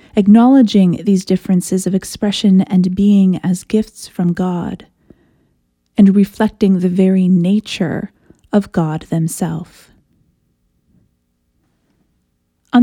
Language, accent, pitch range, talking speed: English, American, 180-225 Hz, 95 wpm